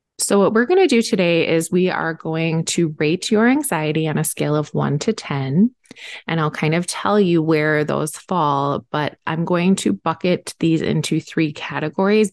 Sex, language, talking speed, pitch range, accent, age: female, English, 195 wpm, 160-205 Hz, American, 20-39